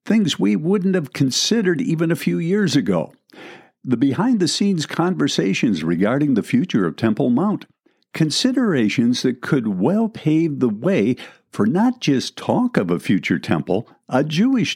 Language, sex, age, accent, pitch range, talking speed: English, male, 60-79, American, 125-200 Hz, 155 wpm